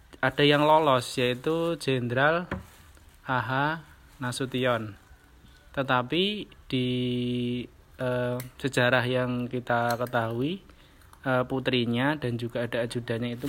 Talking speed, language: 95 wpm, Indonesian